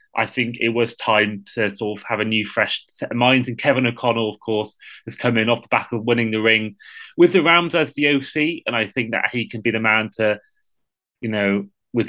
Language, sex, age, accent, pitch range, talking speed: English, male, 20-39, British, 115-135 Hz, 245 wpm